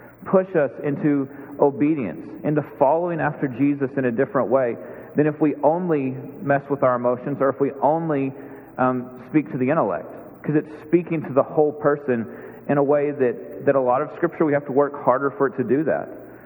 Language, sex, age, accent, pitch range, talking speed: English, male, 40-59, American, 135-165 Hz, 200 wpm